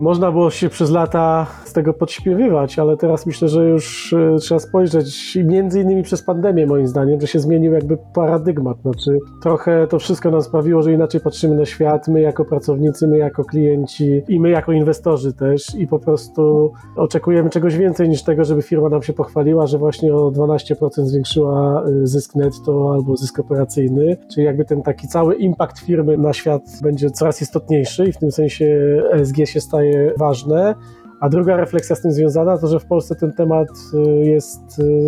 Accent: native